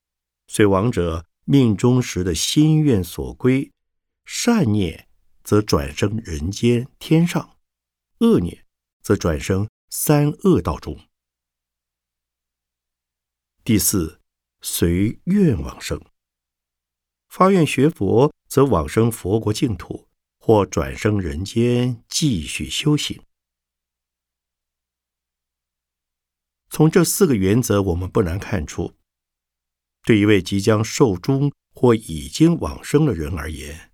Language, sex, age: Chinese, male, 60-79